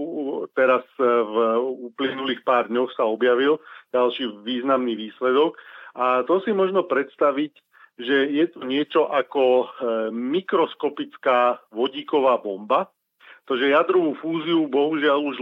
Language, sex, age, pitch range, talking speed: Slovak, male, 40-59, 120-140 Hz, 115 wpm